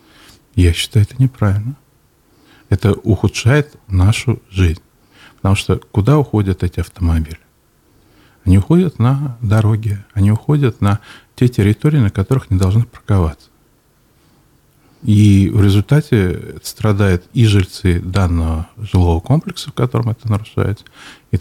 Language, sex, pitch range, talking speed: Russian, male, 90-115 Hz, 120 wpm